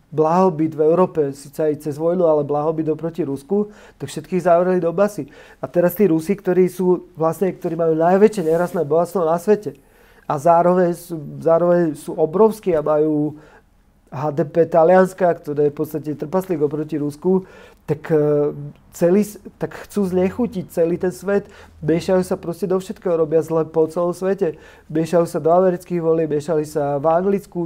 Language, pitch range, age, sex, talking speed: Slovak, 155-180 Hz, 40-59, male, 165 wpm